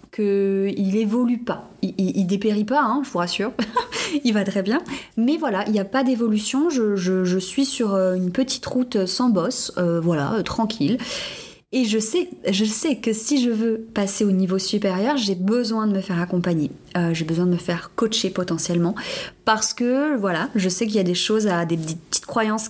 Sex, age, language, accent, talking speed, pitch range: female, 20-39, French, French, 210 wpm, 190-230 Hz